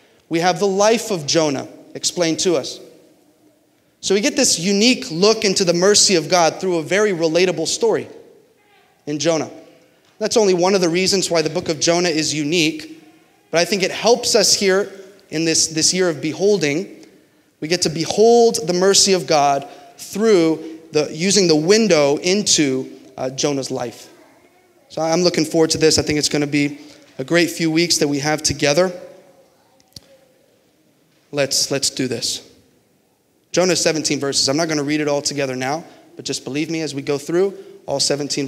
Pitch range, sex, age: 140-190 Hz, male, 30-49